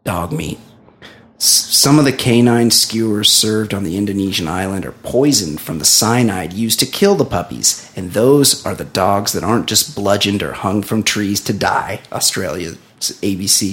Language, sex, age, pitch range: English, male, 30-49, 105-150 Hz